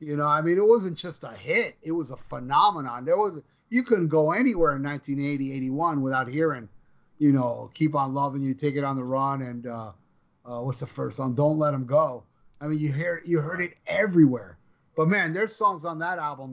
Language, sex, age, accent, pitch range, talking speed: English, male, 30-49, American, 135-180 Hz, 220 wpm